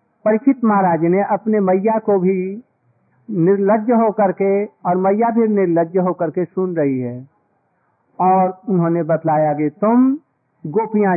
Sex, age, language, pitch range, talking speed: male, 50-69, Hindi, 160-205 Hz, 125 wpm